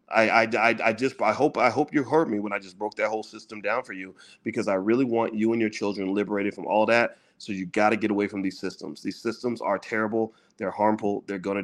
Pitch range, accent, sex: 100-115 Hz, American, male